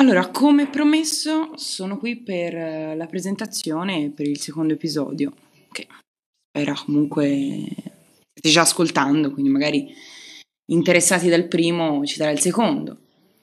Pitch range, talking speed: 155-230 Hz, 115 wpm